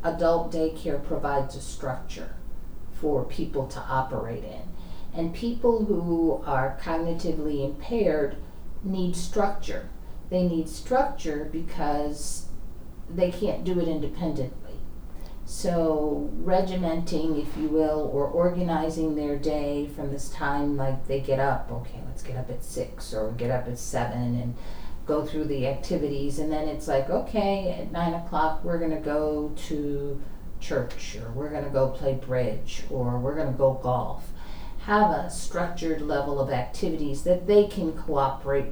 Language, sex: English, female